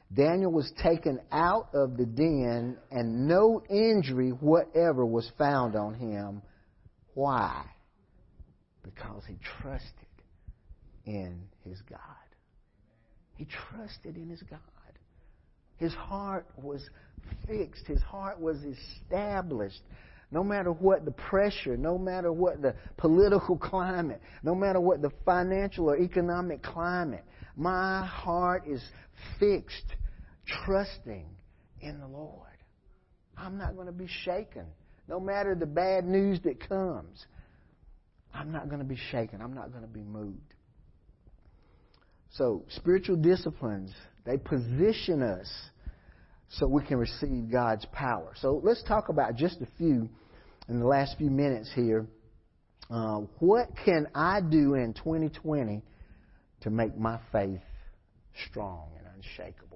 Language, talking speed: English, 125 wpm